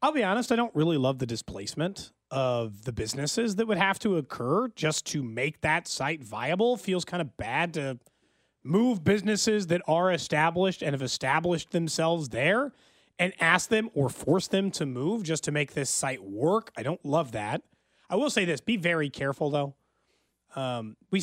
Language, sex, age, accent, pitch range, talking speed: English, male, 30-49, American, 140-195 Hz, 185 wpm